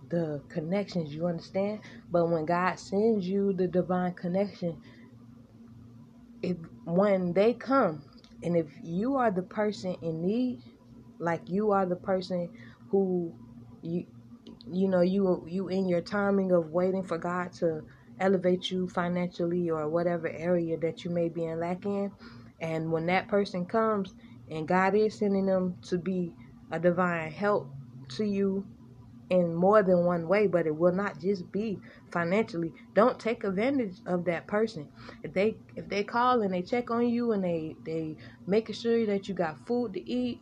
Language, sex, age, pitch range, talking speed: English, female, 20-39, 165-205 Hz, 165 wpm